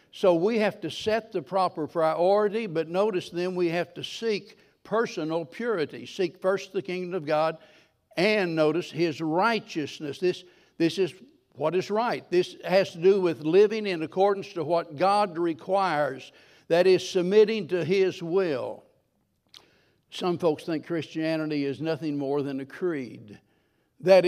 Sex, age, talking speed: male, 60-79, 155 wpm